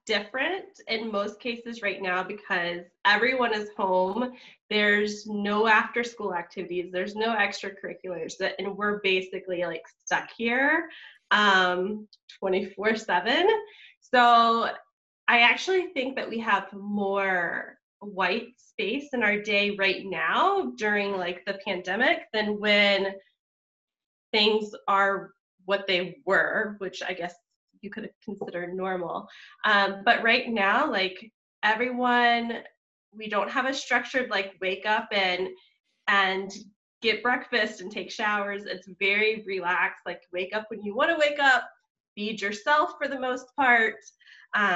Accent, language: American, English